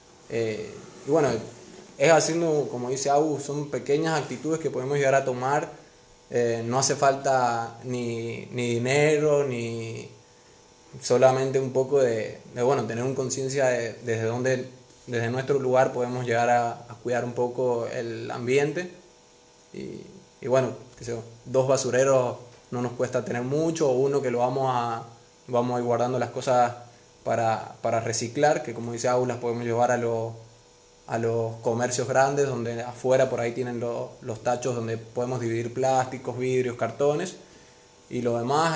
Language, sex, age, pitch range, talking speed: Spanish, male, 20-39, 120-130 Hz, 160 wpm